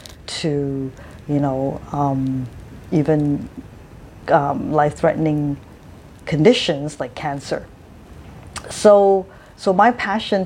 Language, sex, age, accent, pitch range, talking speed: English, female, 40-59, American, 140-175 Hz, 80 wpm